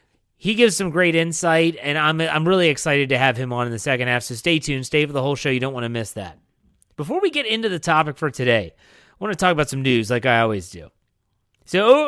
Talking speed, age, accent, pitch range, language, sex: 260 wpm, 30-49, American, 125-165 Hz, English, male